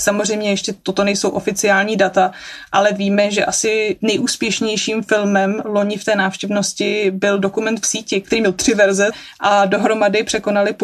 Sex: female